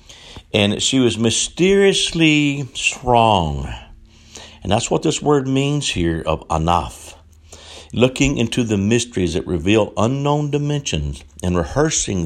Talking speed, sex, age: 115 wpm, male, 60-79